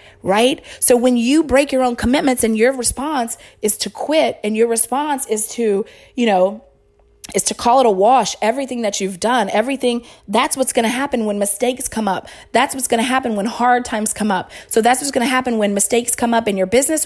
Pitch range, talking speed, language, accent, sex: 210-250 Hz, 225 wpm, English, American, female